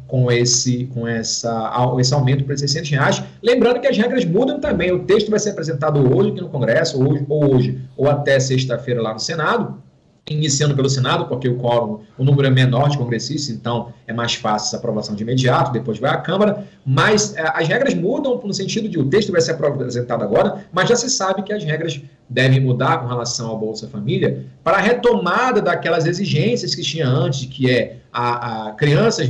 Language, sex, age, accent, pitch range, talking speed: Portuguese, male, 40-59, Brazilian, 125-180 Hz, 195 wpm